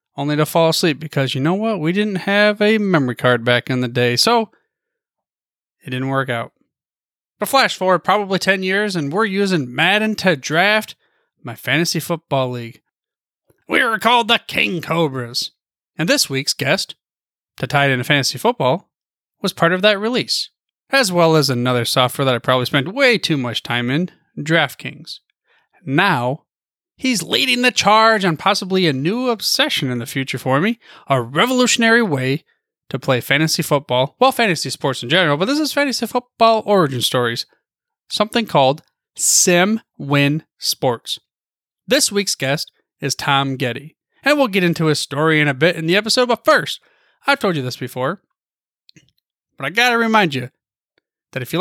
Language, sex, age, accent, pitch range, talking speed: English, male, 30-49, American, 135-220 Hz, 170 wpm